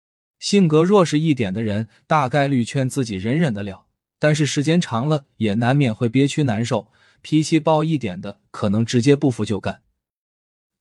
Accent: native